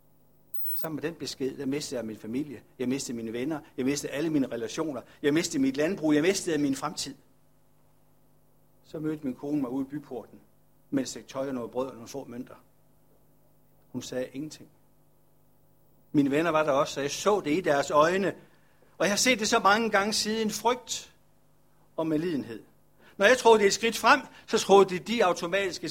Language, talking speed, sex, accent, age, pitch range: Danish, 200 wpm, male, native, 60-79, 145-215 Hz